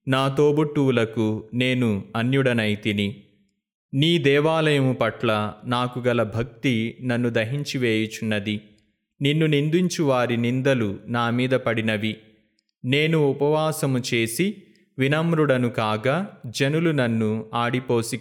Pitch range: 110-135 Hz